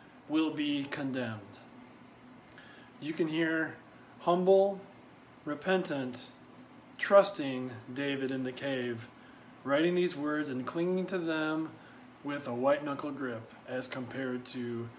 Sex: male